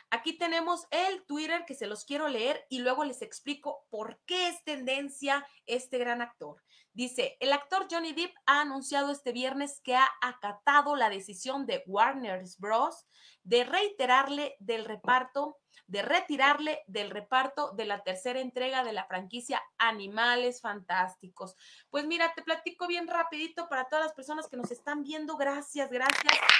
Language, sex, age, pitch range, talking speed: English, female, 30-49, 230-300 Hz, 160 wpm